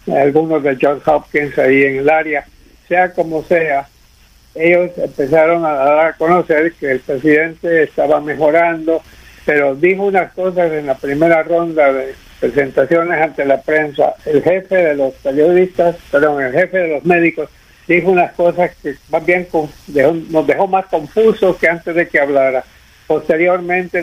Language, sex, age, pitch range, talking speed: Spanish, male, 60-79, 145-175 Hz, 160 wpm